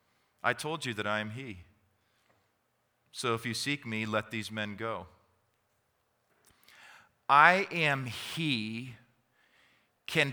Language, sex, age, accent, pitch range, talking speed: English, male, 40-59, American, 110-145 Hz, 115 wpm